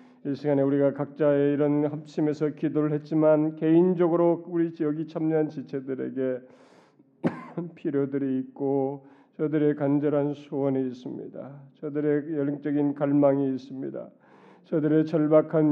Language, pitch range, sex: Korean, 150-170 Hz, male